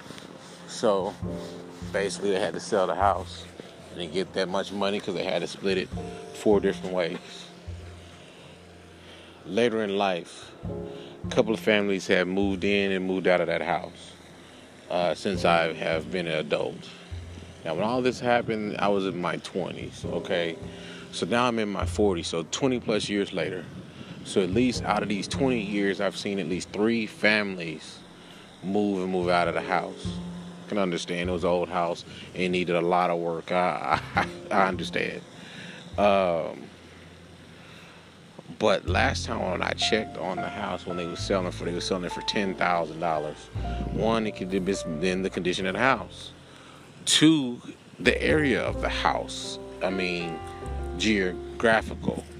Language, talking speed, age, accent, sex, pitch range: English, 175 wpm, 30-49, American, male, 85-100 Hz